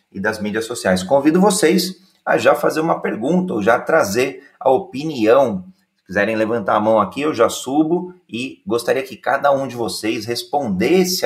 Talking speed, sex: 175 wpm, male